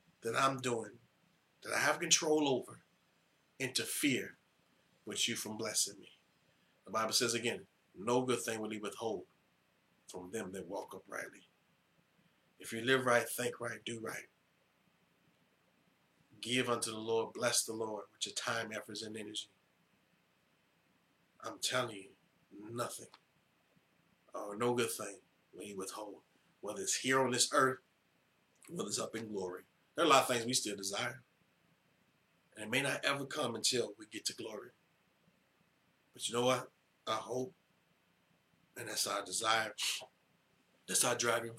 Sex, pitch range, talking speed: male, 110-130 Hz, 155 wpm